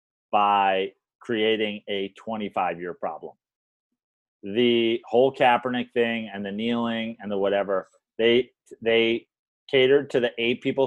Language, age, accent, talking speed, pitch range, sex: English, 30-49, American, 120 wpm, 110-140 Hz, male